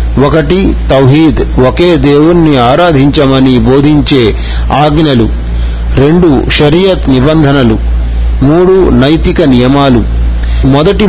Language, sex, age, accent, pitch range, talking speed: Telugu, male, 50-69, native, 115-160 Hz, 75 wpm